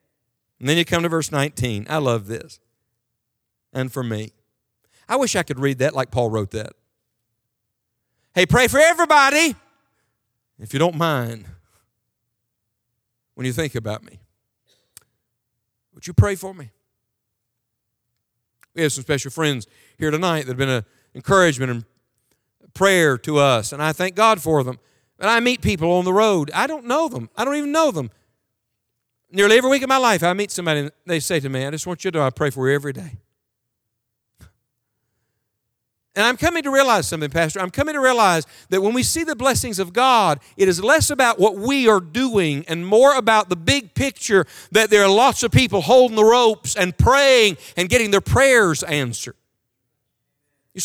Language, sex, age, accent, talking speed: English, male, 50-69, American, 180 wpm